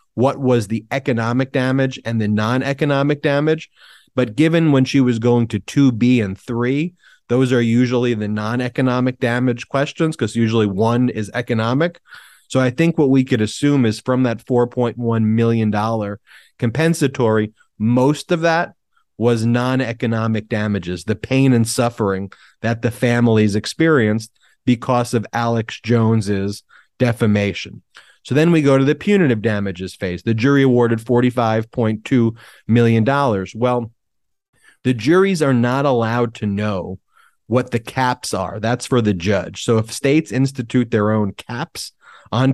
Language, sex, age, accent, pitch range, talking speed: English, male, 30-49, American, 110-130 Hz, 150 wpm